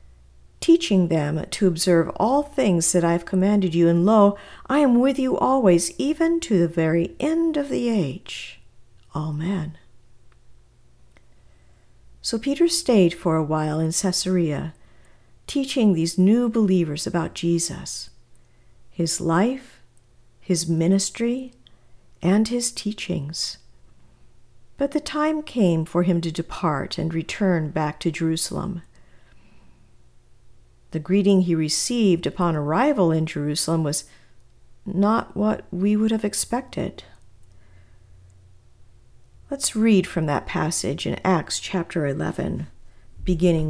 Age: 50-69